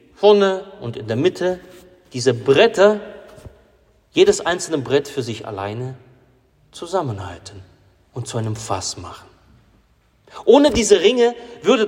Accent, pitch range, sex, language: German, 105-170 Hz, male, German